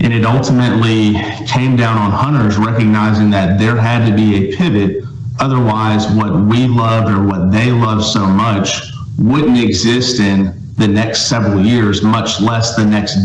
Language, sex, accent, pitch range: English, male, American, 105-125 Hz